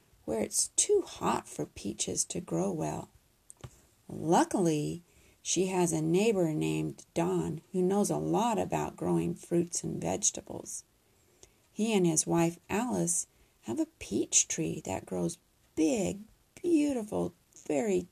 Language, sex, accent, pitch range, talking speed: English, female, American, 165-270 Hz, 130 wpm